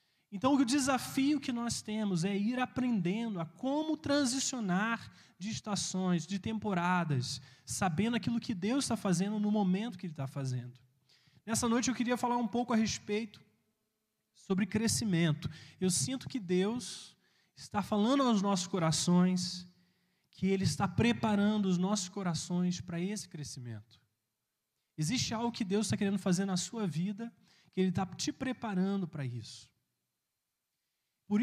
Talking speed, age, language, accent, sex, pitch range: 145 wpm, 20-39, Portuguese, Brazilian, male, 170-220 Hz